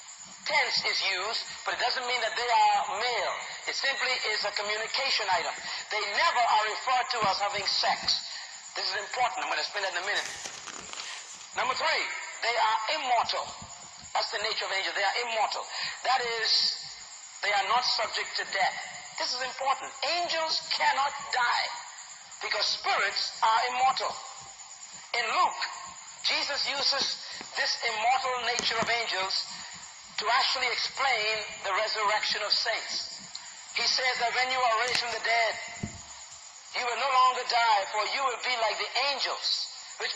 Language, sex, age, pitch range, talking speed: English, male, 40-59, 230-275 Hz, 155 wpm